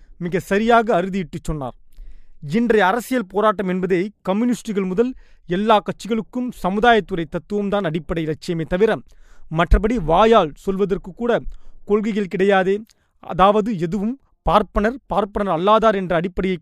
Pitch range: 170-215 Hz